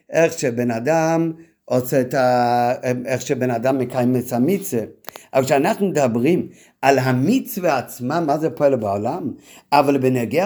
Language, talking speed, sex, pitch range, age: Hebrew, 130 wpm, male, 135-185 Hz, 50-69